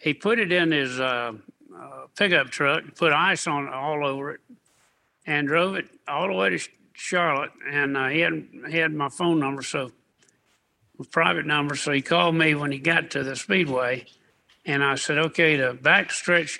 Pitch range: 140-165 Hz